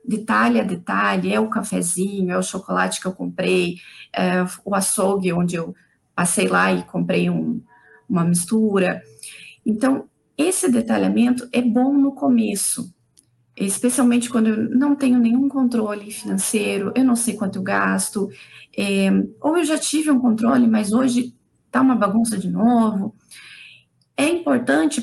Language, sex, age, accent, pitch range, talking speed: Portuguese, female, 20-39, Brazilian, 195-245 Hz, 145 wpm